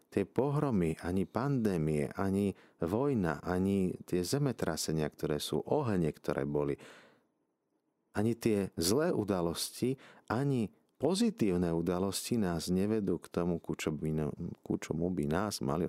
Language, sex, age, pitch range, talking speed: Slovak, male, 50-69, 80-100 Hz, 115 wpm